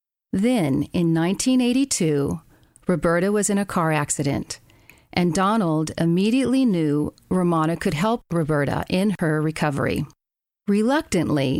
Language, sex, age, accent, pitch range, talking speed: English, female, 40-59, American, 160-220 Hz, 110 wpm